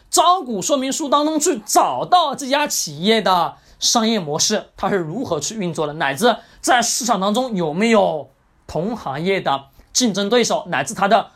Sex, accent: male, native